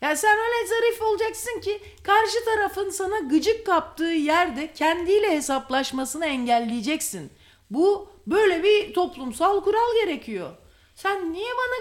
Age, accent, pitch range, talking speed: 50-69, Turkish, 255-395 Hz, 125 wpm